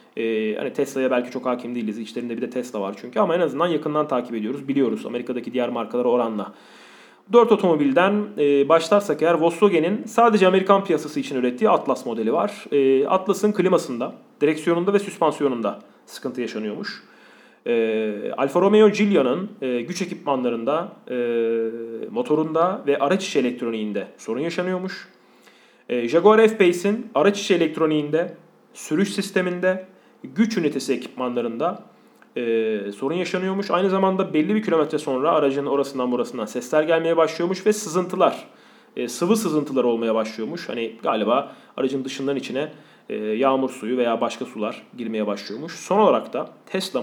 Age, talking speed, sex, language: 30-49, 140 wpm, male, Turkish